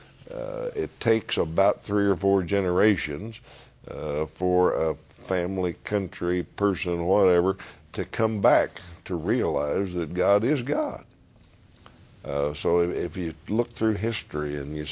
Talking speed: 135 wpm